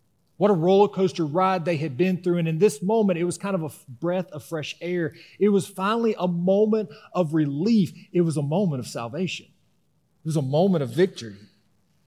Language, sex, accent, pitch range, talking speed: English, male, American, 160-195 Hz, 205 wpm